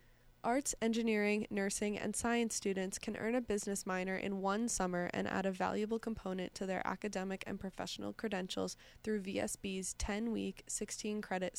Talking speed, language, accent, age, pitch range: 150 wpm, English, American, 20-39, 185-215 Hz